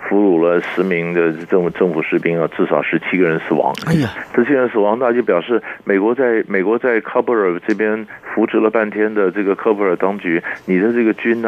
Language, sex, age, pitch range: Chinese, male, 50-69, 95-125 Hz